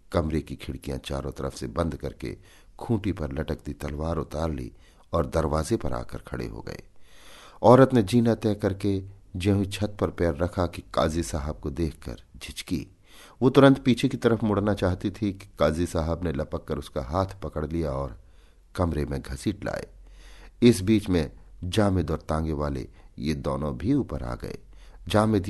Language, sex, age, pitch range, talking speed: Hindi, male, 50-69, 70-95 Hz, 170 wpm